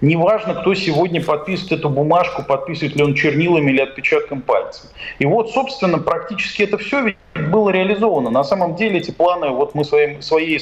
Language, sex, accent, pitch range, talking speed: Russian, male, native, 145-200 Hz, 165 wpm